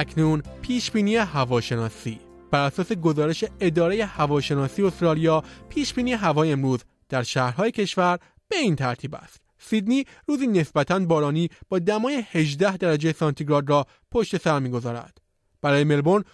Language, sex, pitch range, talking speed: Persian, male, 140-190 Hz, 135 wpm